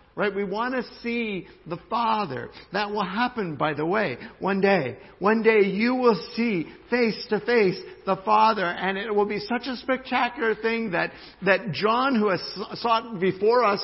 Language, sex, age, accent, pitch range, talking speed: English, male, 60-79, American, 125-195 Hz, 180 wpm